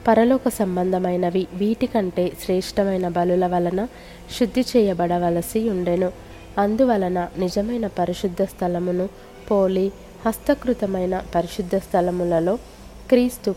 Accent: native